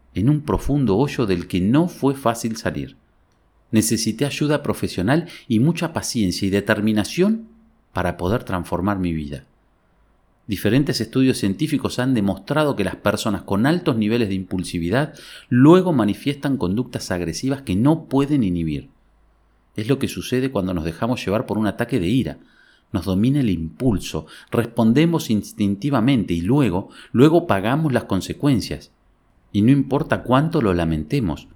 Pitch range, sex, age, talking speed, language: 90-135 Hz, male, 40-59, 145 wpm, Spanish